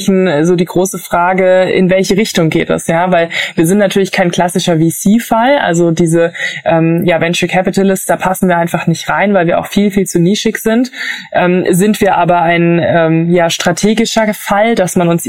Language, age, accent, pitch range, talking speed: German, 20-39, German, 170-190 Hz, 190 wpm